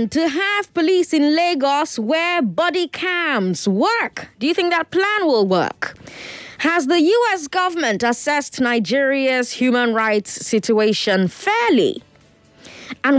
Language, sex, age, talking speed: English, female, 20-39, 125 wpm